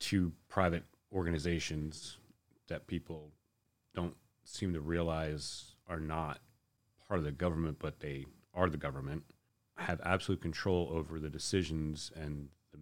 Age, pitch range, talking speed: 30-49, 80-100 Hz, 130 wpm